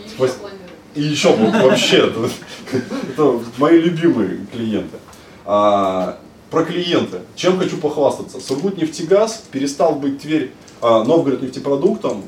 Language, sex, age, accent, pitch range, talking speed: Russian, male, 20-39, native, 110-145 Hz, 110 wpm